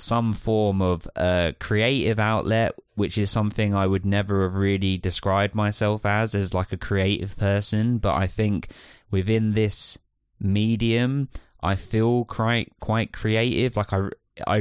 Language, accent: English, British